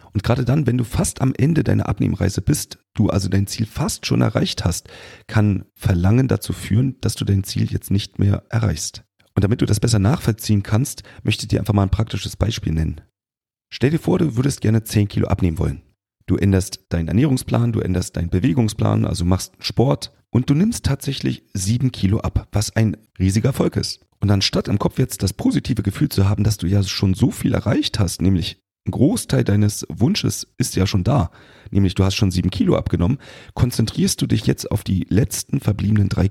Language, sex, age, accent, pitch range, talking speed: German, male, 40-59, German, 95-120 Hz, 205 wpm